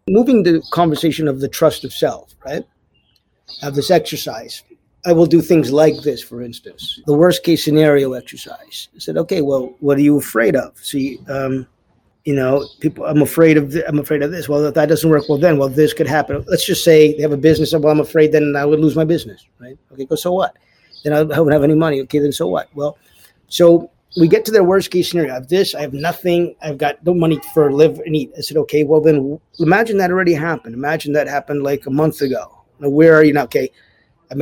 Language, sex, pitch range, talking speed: English, male, 145-170 Hz, 230 wpm